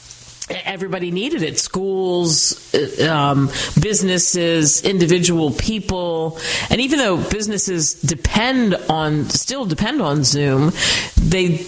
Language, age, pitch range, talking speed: English, 40-59, 145-175 Hz, 100 wpm